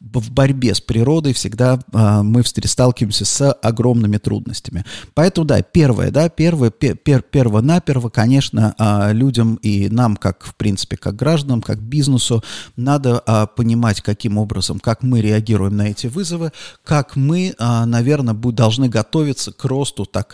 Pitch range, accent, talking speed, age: 110-135 Hz, native, 160 wpm, 30-49